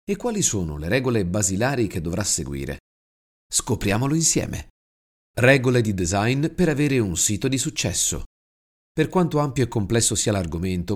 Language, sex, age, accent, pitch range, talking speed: Italian, male, 40-59, native, 90-130 Hz, 150 wpm